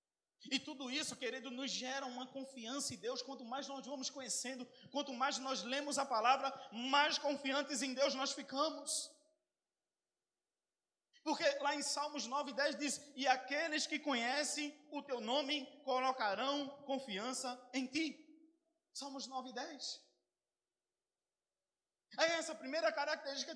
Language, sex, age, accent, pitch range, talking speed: Portuguese, male, 20-39, Brazilian, 245-290 Hz, 130 wpm